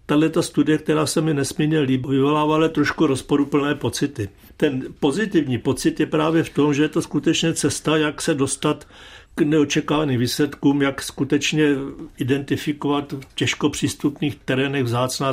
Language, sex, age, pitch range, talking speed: Czech, male, 60-79, 135-155 Hz, 145 wpm